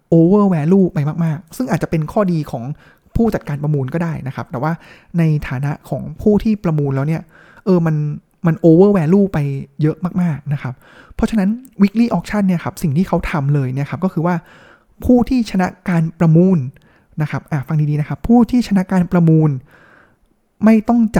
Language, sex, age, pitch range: Thai, male, 20-39, 150-190 Hz